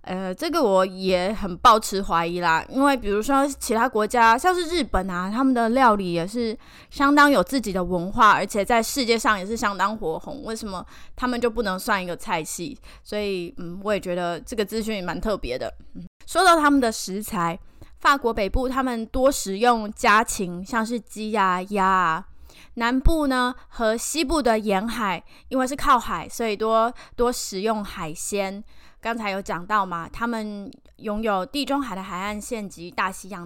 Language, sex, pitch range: Chinese, female, 190-245 Hz